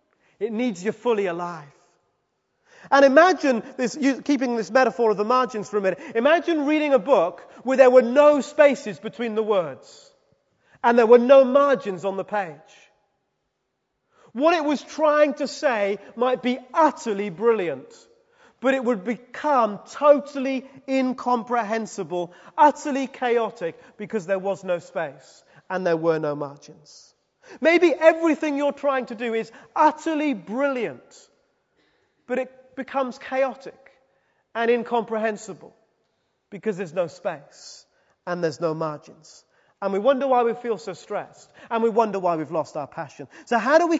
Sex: male